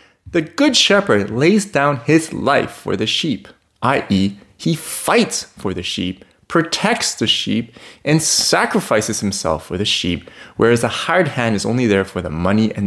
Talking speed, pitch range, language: 170 wpm, 105-165 Hz, English